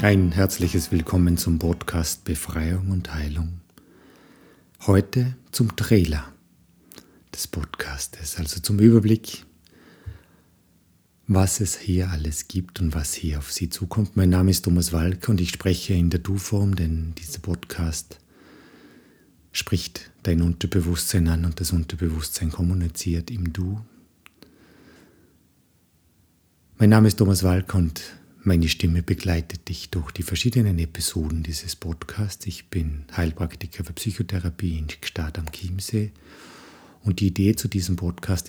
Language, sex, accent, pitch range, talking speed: German, male, German, 85-95 Hz, 130 wpm